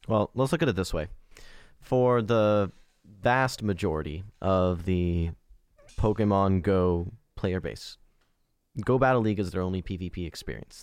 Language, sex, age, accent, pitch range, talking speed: English, male, 30-49, American, 95-125 Hz, 140 wpm